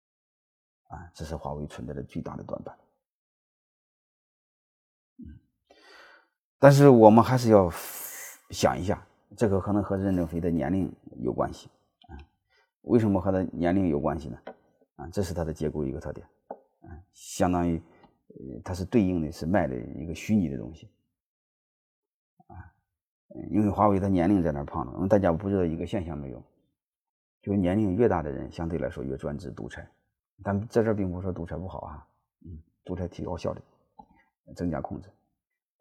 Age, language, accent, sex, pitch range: 30-49, Chinese, native, male, 80-100 Hz